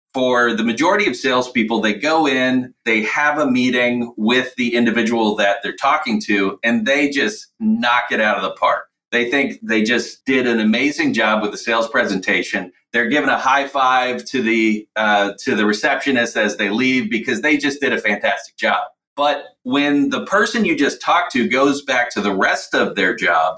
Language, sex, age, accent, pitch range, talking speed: English, male, 40-59, American, 110-145 Hz, 195 wpm